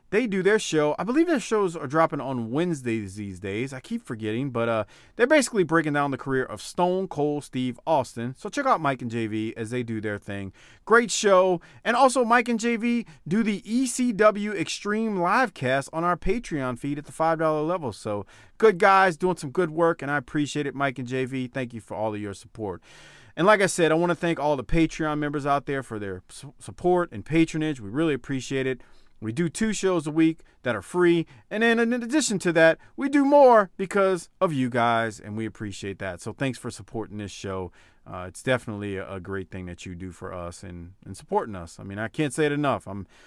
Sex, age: male, 40-59